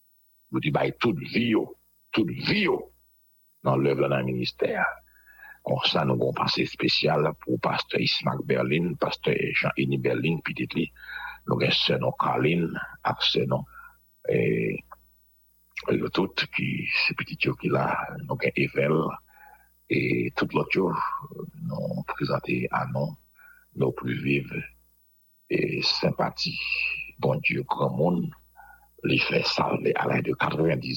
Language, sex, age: English, male, 60-79